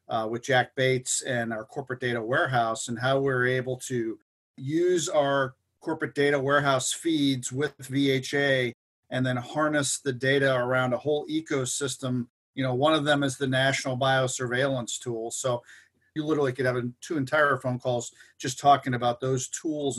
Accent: American